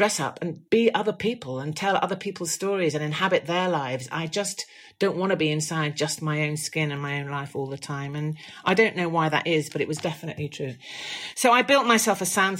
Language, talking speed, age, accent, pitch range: English, 245 wpm, 40-59, British, 135-185 Hz